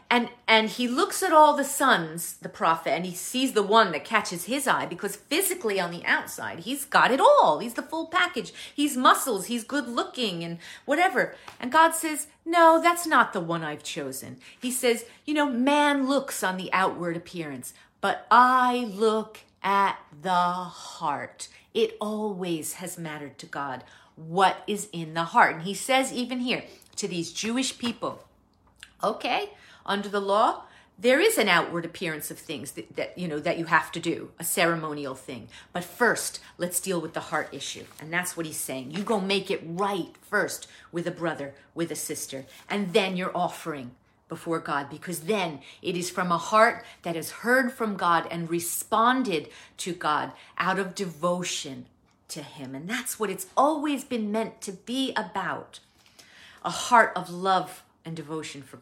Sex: female